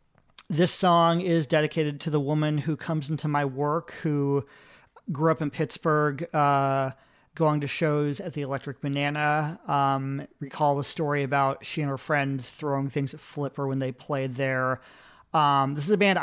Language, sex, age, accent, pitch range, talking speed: English, male, 40-59, American, 135-155 Hz, 175 wpm